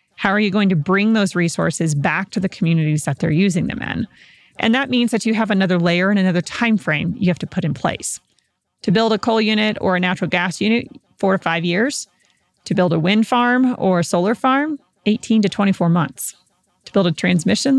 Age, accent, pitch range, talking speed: 30-49, American, 175-215 Hz, 225 wpm